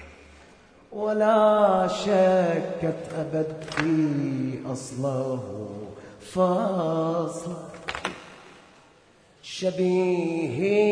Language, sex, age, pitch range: Arabic, male, 30-49, 135-160 Hz